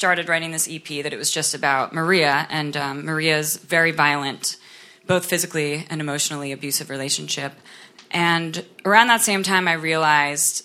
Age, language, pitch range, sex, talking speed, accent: 20-39, English, 145-175 Hz, female, 160 wpm, American